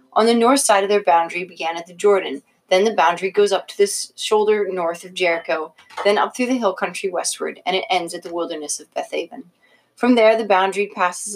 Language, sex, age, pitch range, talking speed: English, female, 30-49, 175-210 Hz, 220 wpm